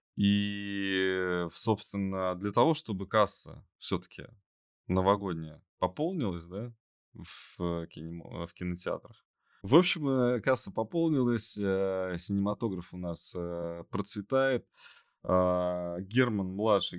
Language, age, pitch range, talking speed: Russian, 20-39, 85-110 Hz, 85 wpm